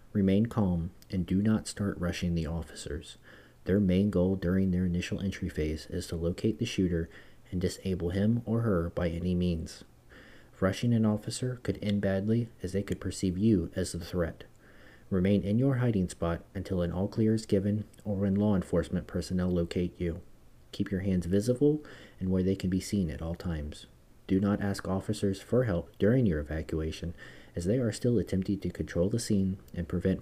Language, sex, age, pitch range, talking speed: English, male, 40-59, 85-105 Hz, 190 wpm